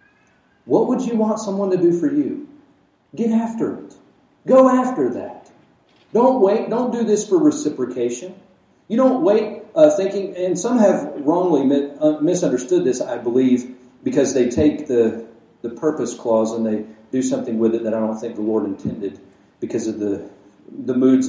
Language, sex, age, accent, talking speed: English, male, 40-59, American, 175 wpm